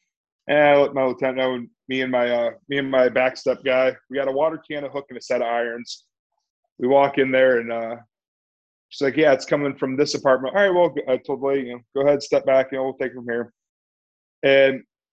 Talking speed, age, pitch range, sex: 240 wpm, 20-39, 120-145 Hz, male